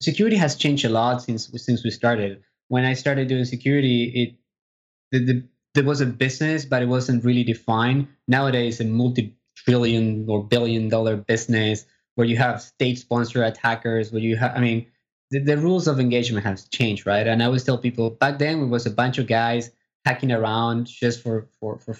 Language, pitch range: English, 115-135 Hz